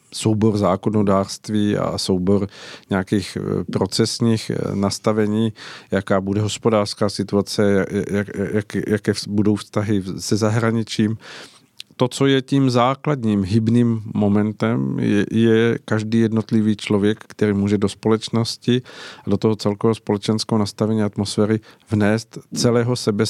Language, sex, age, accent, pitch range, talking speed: Czech, male, 50-69, native, 105-115 Hz, 115 wpm